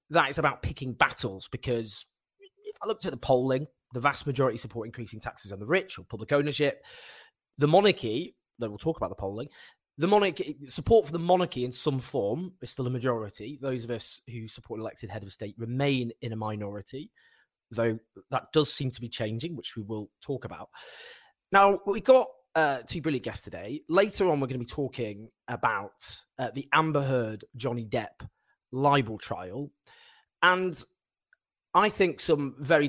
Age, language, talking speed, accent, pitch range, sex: 20-39, English, 180 wpm, British, 115-150 Hz, male